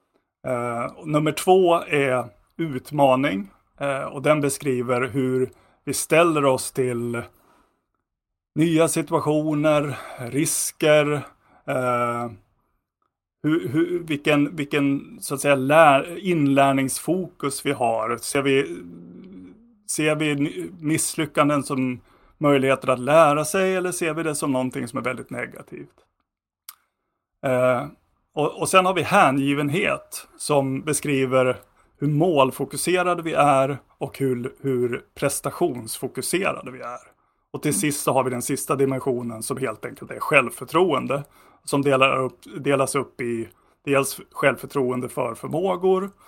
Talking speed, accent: 115 wpm, native